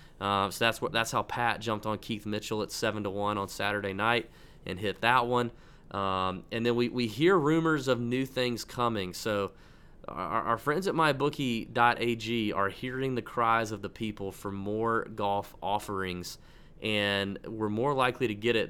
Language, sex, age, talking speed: English, male, 20-39, 185 wpm